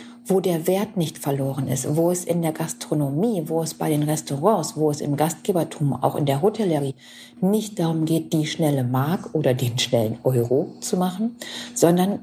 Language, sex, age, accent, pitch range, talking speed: German, female, 50-69, German, 160-215 Hz, 180 wpm